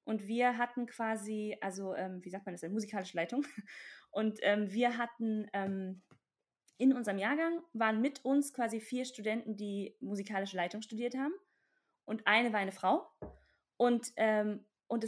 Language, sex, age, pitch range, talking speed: German, female, 20-39, 205-250 Hz, 165 wpm